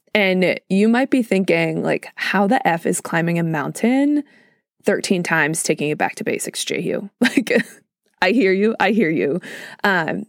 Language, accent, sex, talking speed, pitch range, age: English, American, female, 170 wpm, 170-220 Hz, 20-39